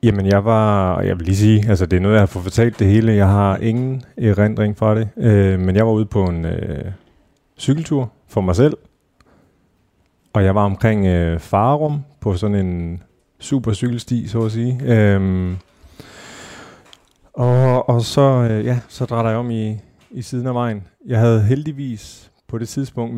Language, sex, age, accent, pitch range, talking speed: Danish, male, 30-49, native, 100-115 Hz, 180 wpm